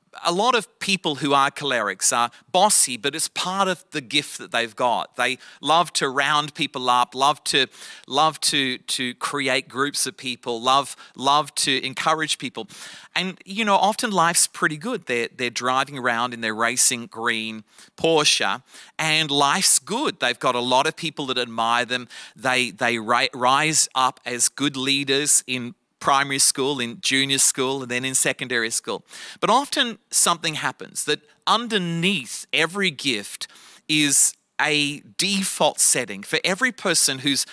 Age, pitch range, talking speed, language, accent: 30-49, 130-165 Hz, 160 wpm, English, Australian